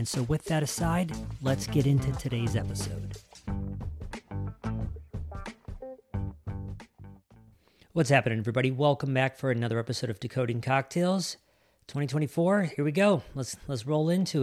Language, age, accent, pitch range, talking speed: English, 40-59, American, 110-140 Hz, 120 wpm